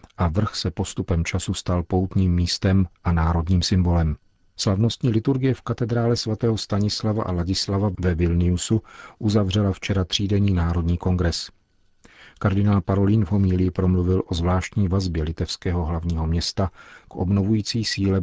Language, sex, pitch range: Czech, male, 85-100 Hz